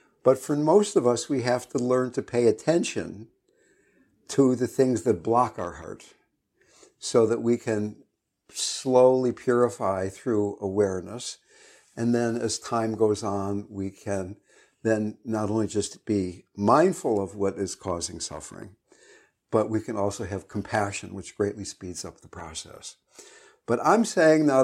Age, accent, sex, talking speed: 60-79, American, male, 150 wpm